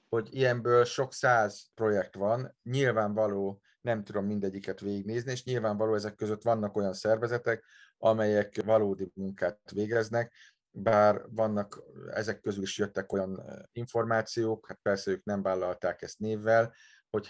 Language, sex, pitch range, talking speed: Hungarian, male, 95-110 Hz, 130 wpm